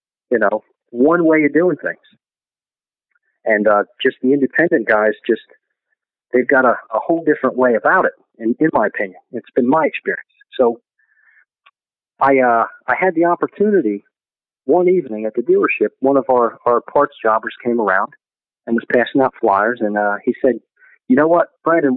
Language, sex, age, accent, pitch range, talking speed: English, male, 40-59, American, 120-205 Hz, 180 wpm